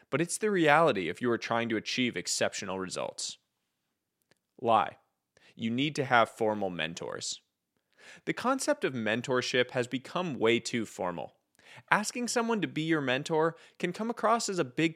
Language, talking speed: English, 160 wpm